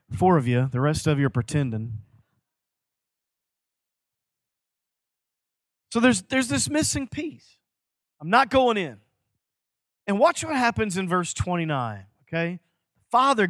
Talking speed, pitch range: 125 wpm, 155-210 Hz